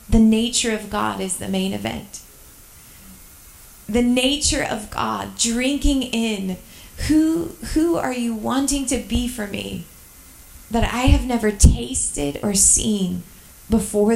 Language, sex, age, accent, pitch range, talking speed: English, female, 30-49, American, 205-260 Hz, 130 wpm